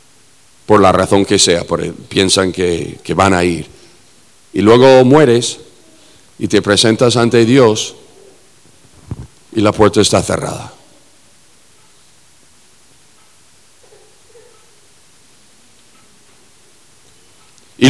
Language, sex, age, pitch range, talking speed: English, male, 40-59, 135-220 Hz, 90 wpm